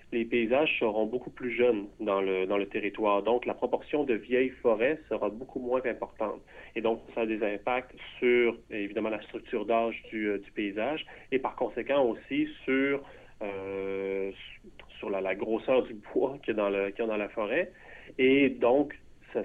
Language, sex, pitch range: English, male, 100-120 Hz